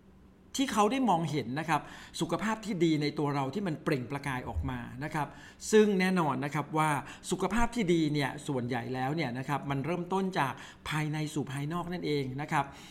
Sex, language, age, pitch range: male, Thai, 60-79, 140-175 Hz